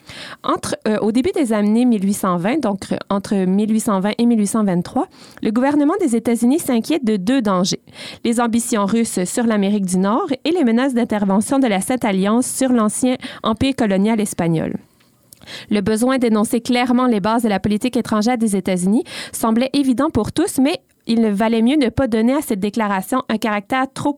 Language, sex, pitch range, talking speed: French, female, 205-245 Hz, 170 wpm